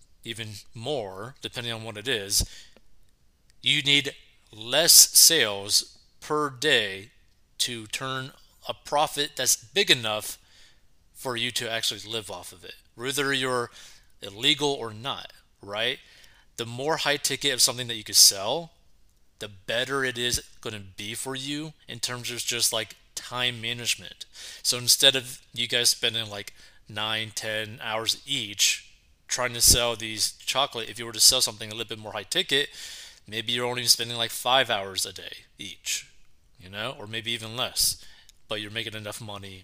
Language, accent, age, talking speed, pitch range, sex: English, American, 30-49, 165 wpm, 105-125 Hz, male